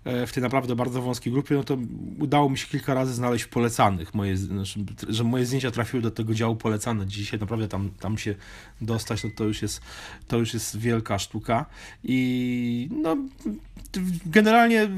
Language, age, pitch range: Polish, 30-49, 110-140 Hz